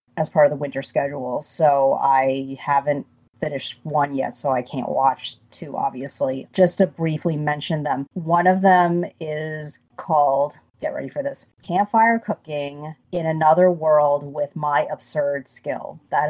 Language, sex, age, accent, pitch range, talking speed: English, female, 30-49, American, 140-165 Hz, 155 wpm